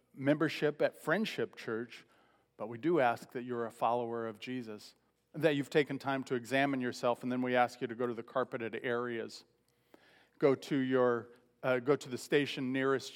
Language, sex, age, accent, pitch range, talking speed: English, male, 40-59, American, 115-130 Hz, 185 wpm